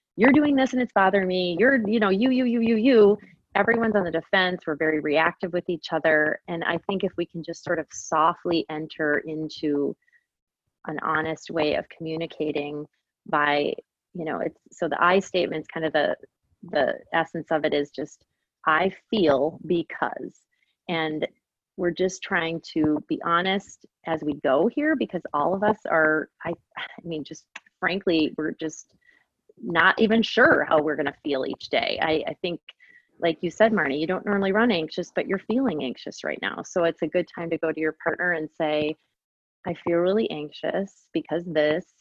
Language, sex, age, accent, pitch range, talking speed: English, female, 30-49, American, 160-195 Hz, 185 wpm